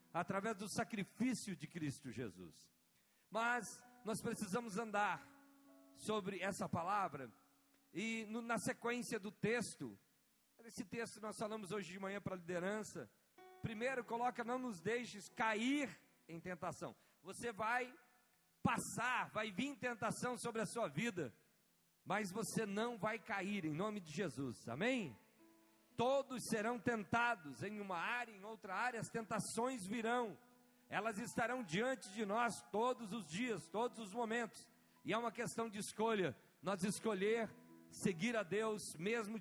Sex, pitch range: male, 185-235 Hz